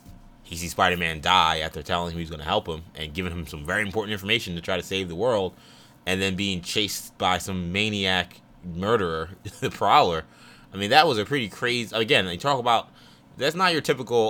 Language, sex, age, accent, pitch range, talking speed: English, male, 20-39, American, 80-100 Hz, 210 wpm